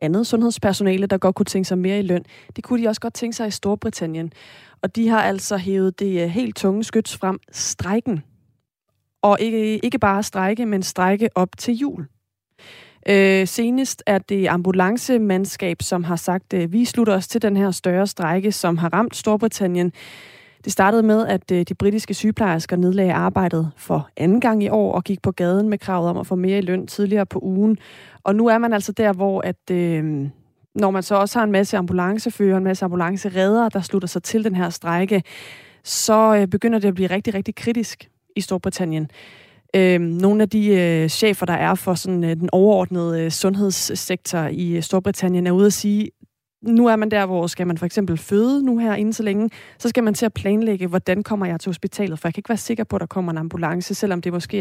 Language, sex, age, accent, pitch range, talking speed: Danish, female, 30-49, native, 180-210 Hz, 200 wpm